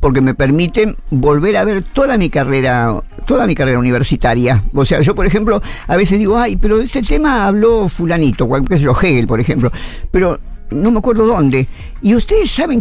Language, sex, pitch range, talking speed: Spanish, female, 135-230 Hz, 185 wpm